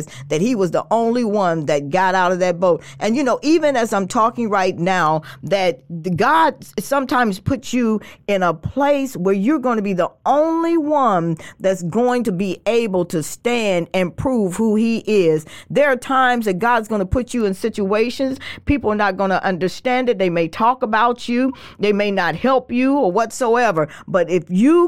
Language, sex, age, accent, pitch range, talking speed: English, female, 40-59, American, 185-250 Hz, 200 wpm